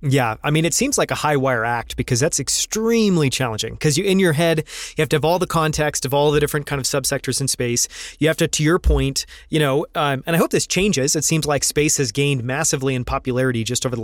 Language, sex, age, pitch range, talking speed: English, male, 30-49, 125-160 Hz, 260 wpm